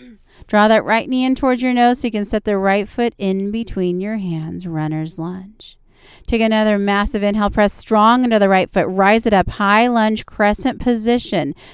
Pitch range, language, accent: 175-215 Hz, English, American